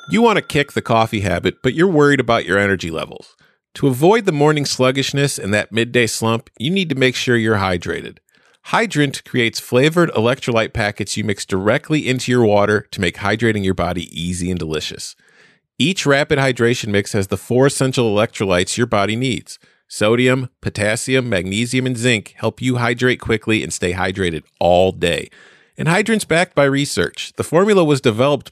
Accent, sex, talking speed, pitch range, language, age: American, male, 175 wpm, 100-135 Hz, English, 40-59